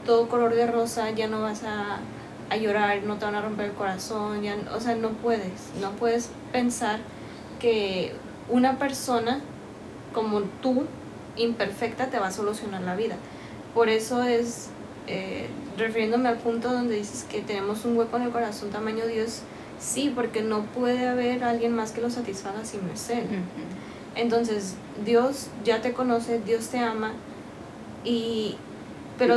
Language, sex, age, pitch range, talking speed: Spanish, female, 10-29, 210-235 Hz, 160 wpm